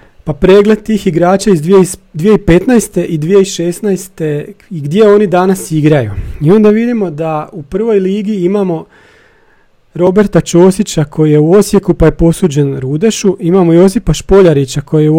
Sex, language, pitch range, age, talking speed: male, Croatian, 155-195 Hz, 40-59, 145 wpm